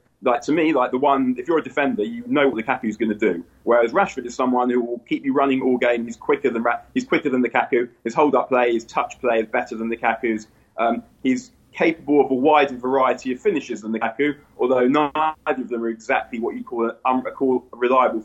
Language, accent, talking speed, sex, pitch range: English, British, 250 wpm, male, 115-145 Hz